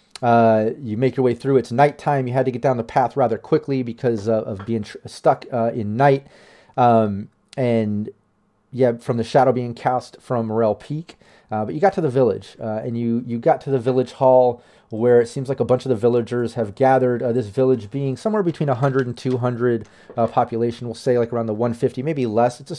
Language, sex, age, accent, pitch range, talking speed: English, male, 30-49, American, 115-130 Hz, 225 wpm